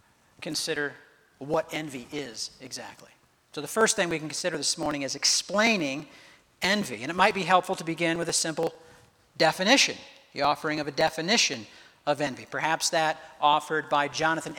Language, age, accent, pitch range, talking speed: English, 50-69, American, 155-200 Hz, 165 wpm